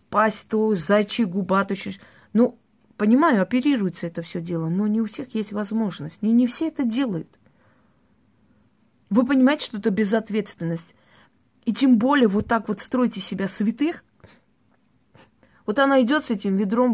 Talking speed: 145 wpm